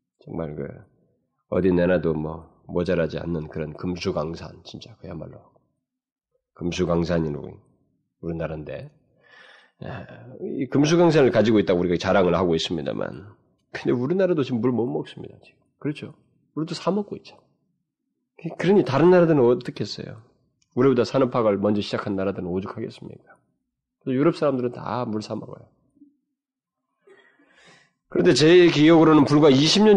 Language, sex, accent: Korean, male, native